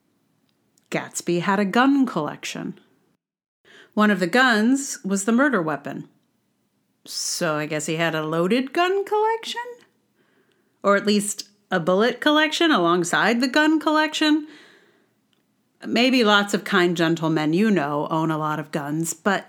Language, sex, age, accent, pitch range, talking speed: English, female, 40-59, American, 170-245 Hz, 140 wpm